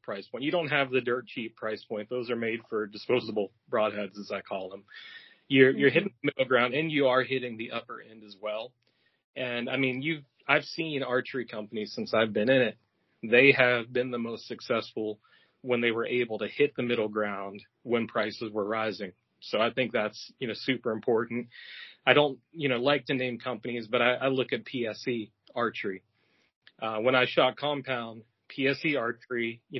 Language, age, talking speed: English, 30-49, 195 wpm